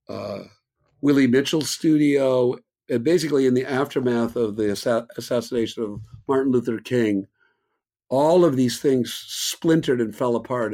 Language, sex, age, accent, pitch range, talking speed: English, male, 50-69, American, 110-150 Hz, 135 wpm